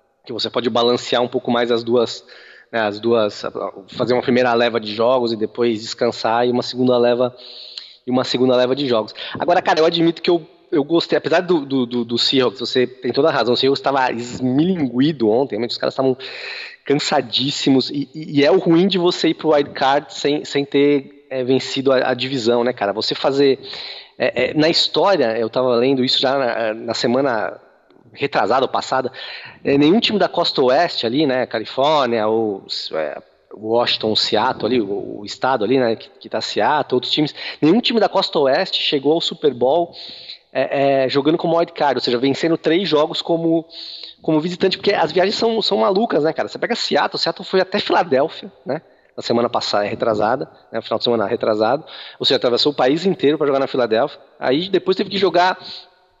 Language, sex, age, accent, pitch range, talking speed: Portuguese, male, 20-39, Brazilian, 125-165 Hz, 200 wpm